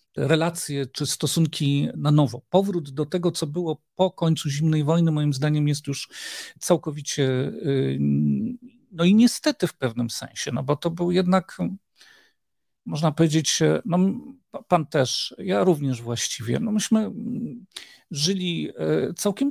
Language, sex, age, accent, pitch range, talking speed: Polish, male, 50-69, native, 145-190 Hz, 125 wpm